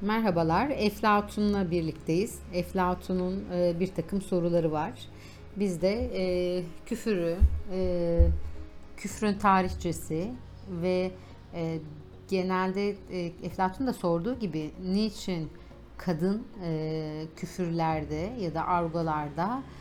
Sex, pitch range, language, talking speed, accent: female, 160-195 Hz, Turkish, 90 wpm, native